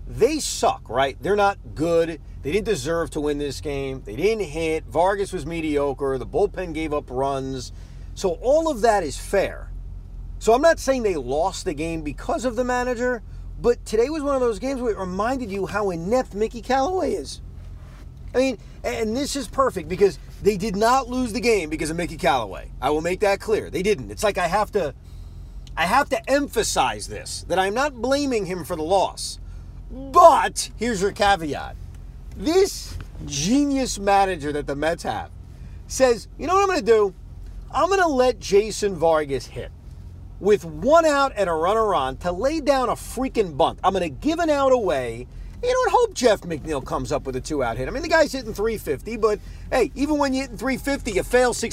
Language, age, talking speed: English, 40-59, 200 wpm